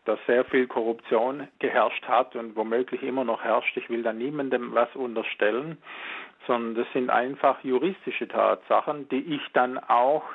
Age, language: 50-69, German